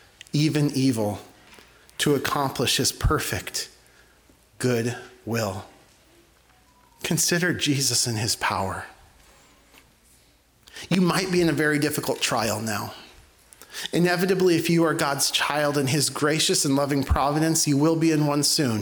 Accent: American